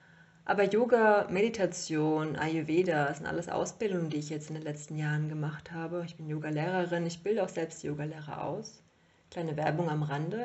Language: German